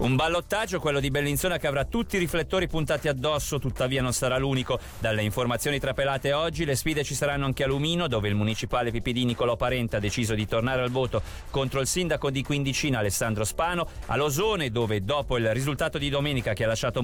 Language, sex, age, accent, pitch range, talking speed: Italian, male, 40-59, native, 120-170 Hz, 200 wpm